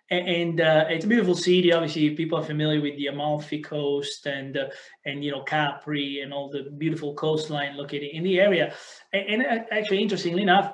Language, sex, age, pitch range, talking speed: English, male, 30-49, 145-170 Hz, 190 wpm